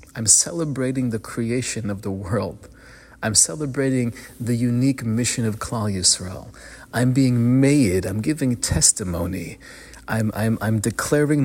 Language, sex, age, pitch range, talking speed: English, male, 30-49, 100-120 Hz, 130 wpm